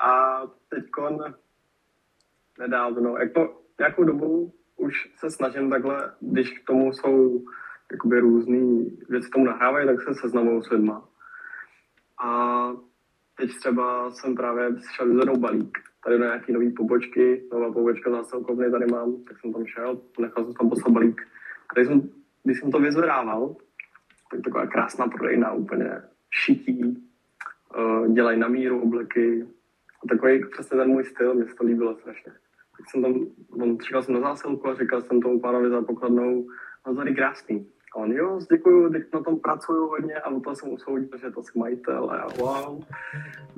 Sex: male